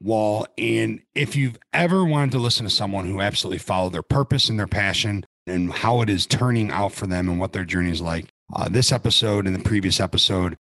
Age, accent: 40-59, American